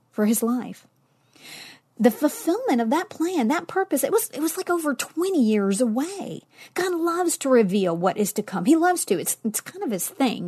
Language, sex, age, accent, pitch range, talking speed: English, female, 40-59, American, 225-310 Hz, 205 wpm